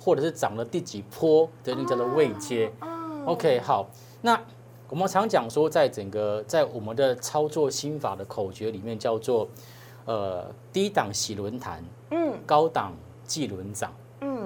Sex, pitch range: male, 115-165 Hz